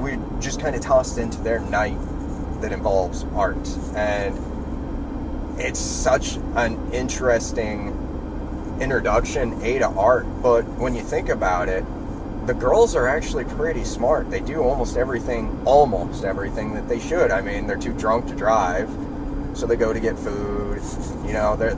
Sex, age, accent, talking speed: male, 30-49, American, 155 wpm